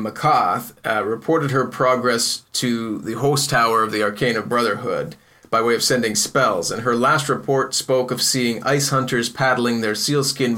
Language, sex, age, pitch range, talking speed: English, male, 30-49, 115-130 Hz, 170 wpm